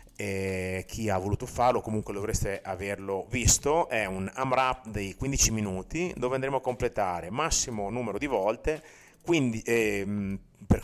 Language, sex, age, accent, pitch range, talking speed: Italian, male, 30-49, native, 95-125 Hz, 150 wpm